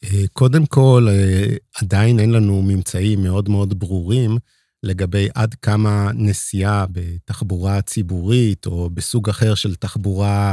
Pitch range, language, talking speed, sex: 100-120 Hz, Hebrew, 115 wpm, male